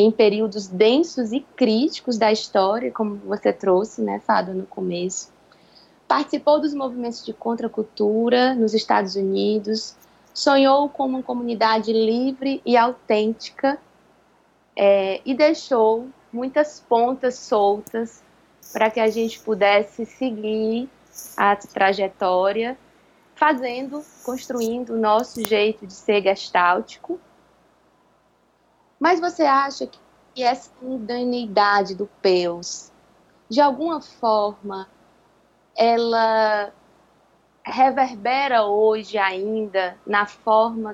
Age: 20-39